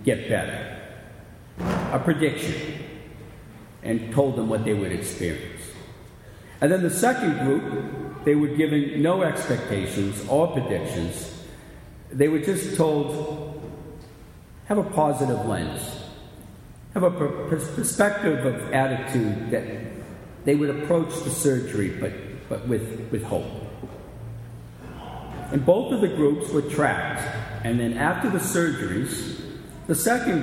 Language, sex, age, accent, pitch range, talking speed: English, male, 50-69, American, 110-150 Hz, 120 wpm